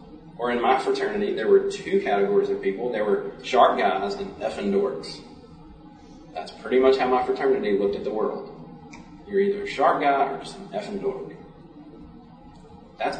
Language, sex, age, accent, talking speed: English, male, 30-49, American, 175 wpm